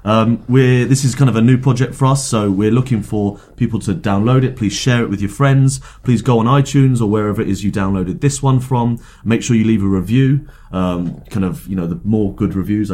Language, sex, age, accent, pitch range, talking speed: English, male, 30-49, British, 95-125 Hz, 245 wpm